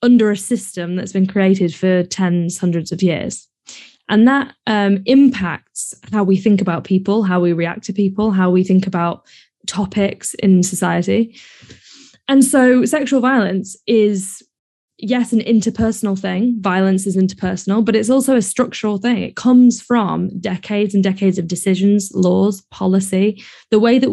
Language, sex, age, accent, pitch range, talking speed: English, female, 10-29, British, 185-215 Hz, 155 wpm